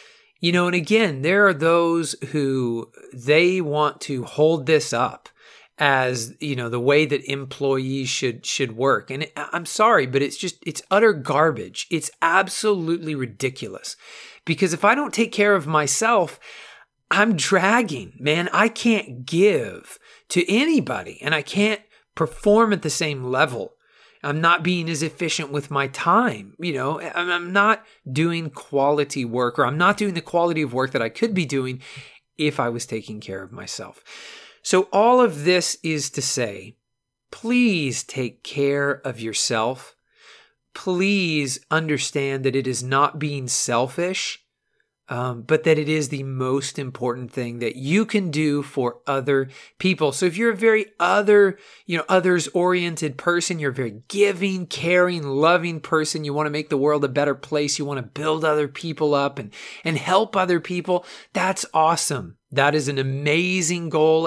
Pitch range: 135-180 Hz